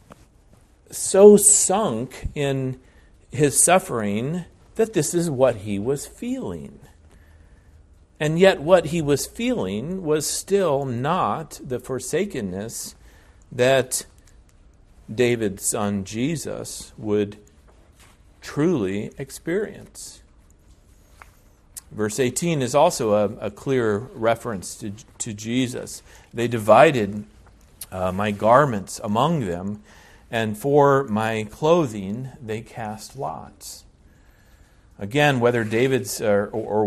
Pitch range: 100-135 Hz